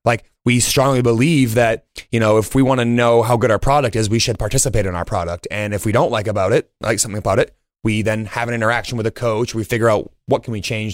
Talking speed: 270 wpm